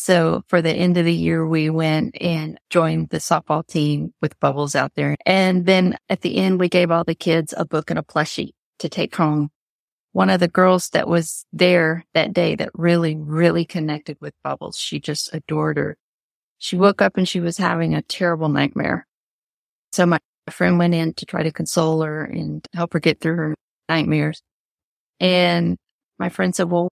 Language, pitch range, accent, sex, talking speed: English, 155-180 Hz, American, female, 195 wpm